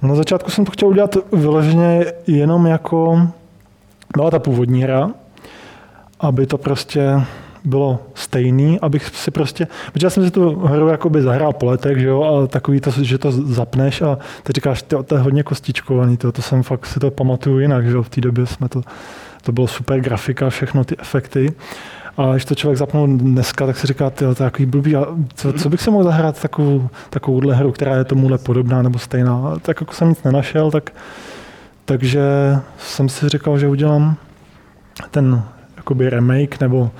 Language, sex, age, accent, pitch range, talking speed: Czech, male, 20-39, native, 130-150 Hz, 185 wpm